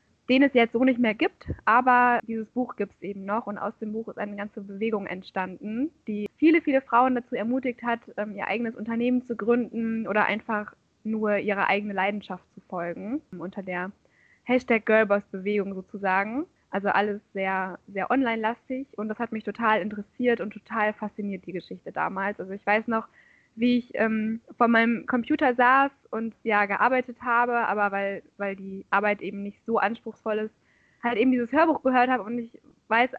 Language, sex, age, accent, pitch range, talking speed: German, female, 20-39, German, 210-245 Hz, 180 wpm